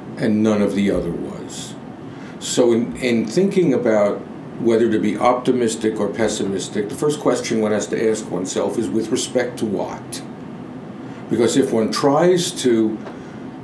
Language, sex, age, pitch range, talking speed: English, male, 50-69, 105-125 Hz, 155 wpm